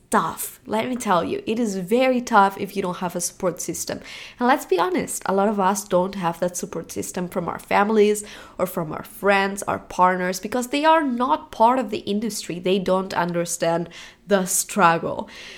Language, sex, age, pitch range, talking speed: English, female, 20-39, 190-250 Hz, 195 wpm